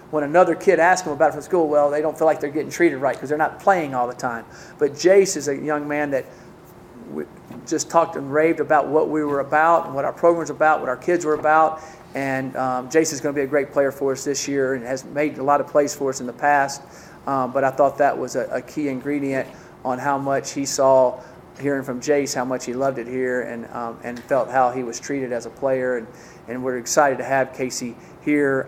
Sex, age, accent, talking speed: male, 40-59, American, 250 wpm